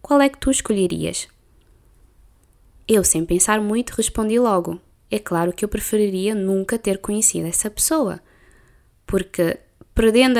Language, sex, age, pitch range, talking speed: Portuguese, female, 20-39, 180-220 Hz, 135 wpm